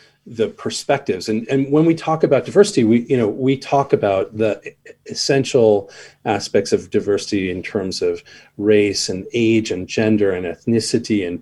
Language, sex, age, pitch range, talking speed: English, male, 40-59, 110-155 Hz, 165 wpm